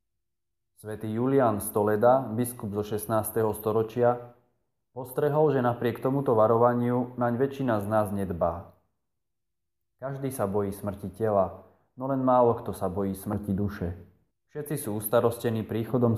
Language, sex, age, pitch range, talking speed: Slovak, male, 20-39, 100-125 Hz, 125 wpm